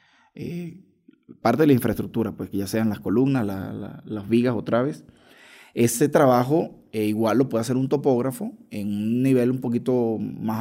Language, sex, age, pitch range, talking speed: Spanish, male, 20-39, 110-130 Hz, 180 wpm